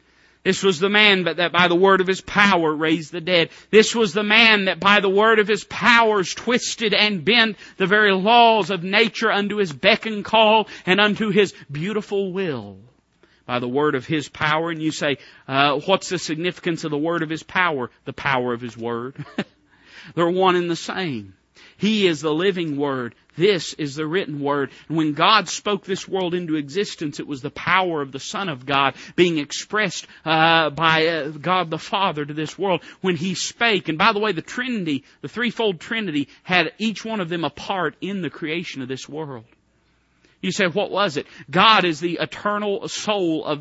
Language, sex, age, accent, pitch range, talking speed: English, male, 40-59, American, 145-195 Hz, 200 wpm